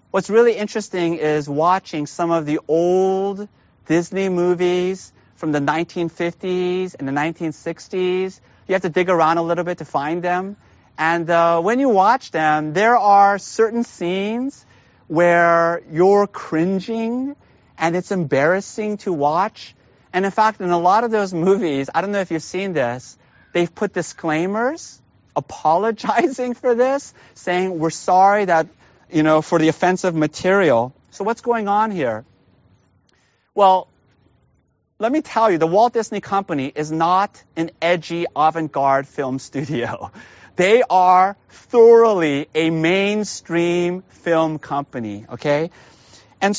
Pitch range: 150-200 Hz